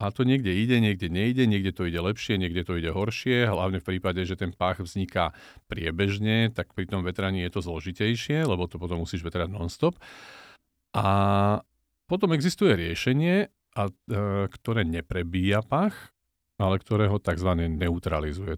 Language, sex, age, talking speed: Slovak, male, 50-69, 150 wpm